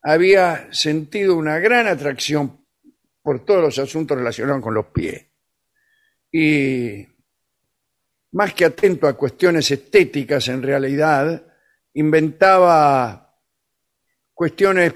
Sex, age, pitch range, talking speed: male, 50-69, 145-190 Hz, 95 wpm